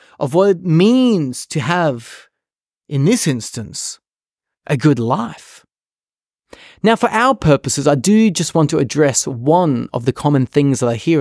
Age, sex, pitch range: 30-49, male, 120-175 Hz